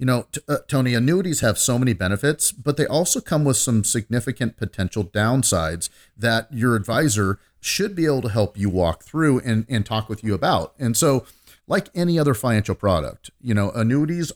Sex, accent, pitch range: male, American, 95-130 Hz